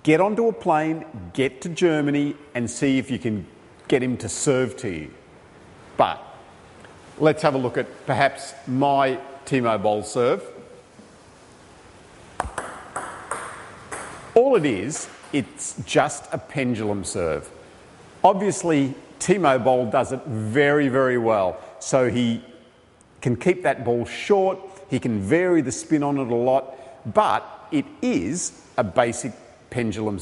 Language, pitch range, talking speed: English, 120-165 Hz, 135 wpm